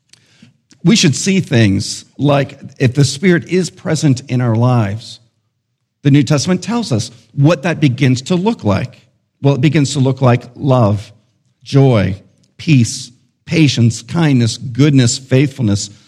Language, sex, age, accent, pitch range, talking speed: English, male, 50-69, American, 115-155 Hz, 140 wpm